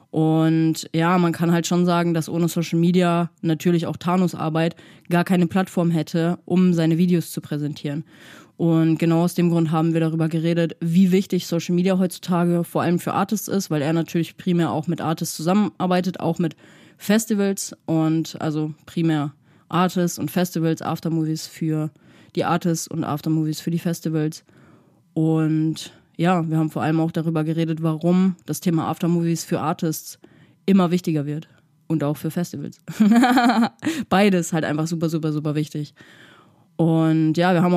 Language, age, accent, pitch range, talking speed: German, 20-39, German, 160-180 Hz, 160 wpm